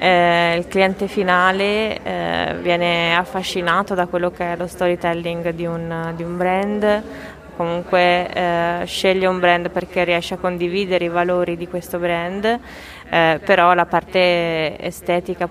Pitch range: 175-190 Hz